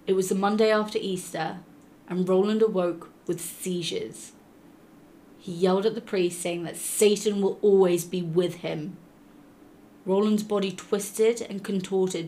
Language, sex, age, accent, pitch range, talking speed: English, female, 20-39, British, 175-205 Hz, 140 wpm